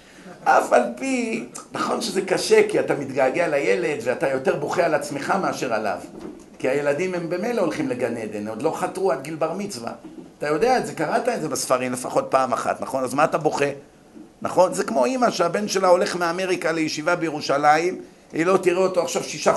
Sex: male